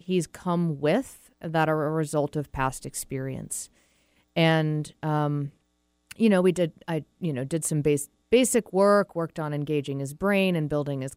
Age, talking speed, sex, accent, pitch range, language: 30-49, 170 wpm, female, American, 130-170 Hz, English